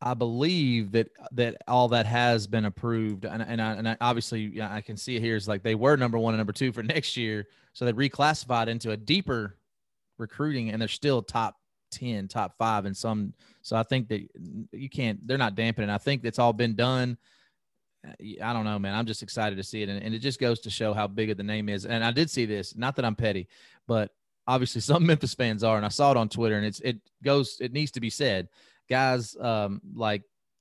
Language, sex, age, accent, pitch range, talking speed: English, male, 30-49, American, 105-130 Hz, 240 wpm